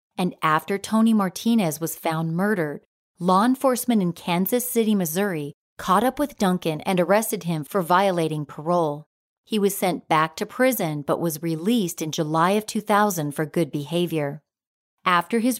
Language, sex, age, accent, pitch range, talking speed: English, female, 40-59, American, 160-210 Hz, 160 wpm